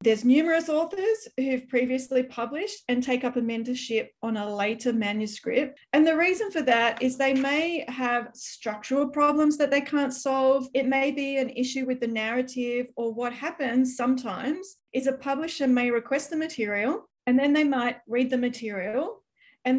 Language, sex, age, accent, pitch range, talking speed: English, female, 30-49, Australian, 225-270 Hz, 175 wpm